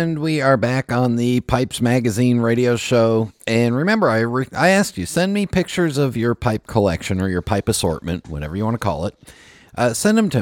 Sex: male